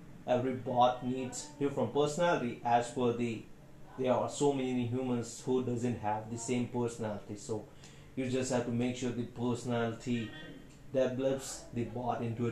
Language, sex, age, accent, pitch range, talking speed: Hindi, male, 20-39, native, 120-140 Hz, 165 wpm